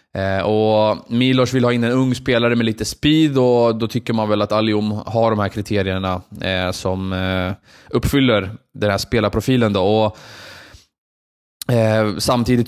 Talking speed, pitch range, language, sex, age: 140 wpm, 100-120 Hz, Swedish, male, 20-39